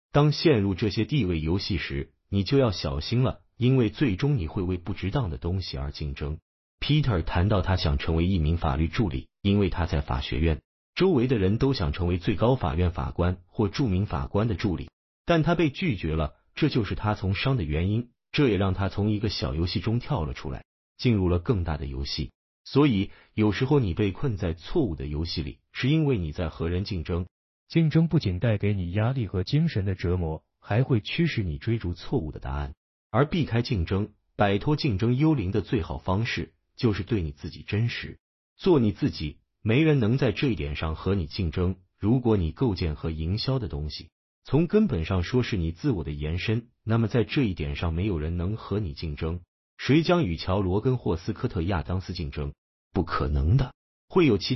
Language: Chinese